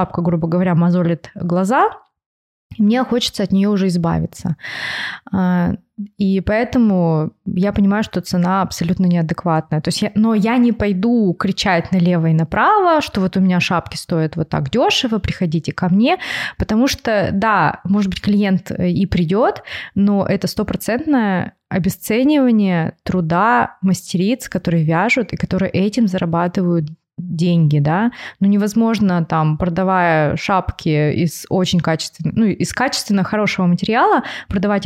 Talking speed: 135 wpm